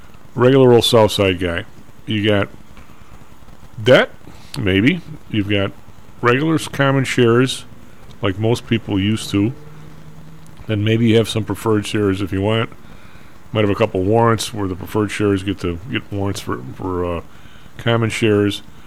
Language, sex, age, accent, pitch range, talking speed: English, male, 40-59, American, 95-125 Hz, 145 wpm